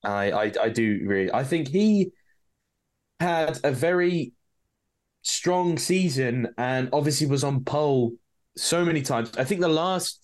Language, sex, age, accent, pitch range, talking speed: English, male, 20-39, British, 105-145 Hz, 145 wpm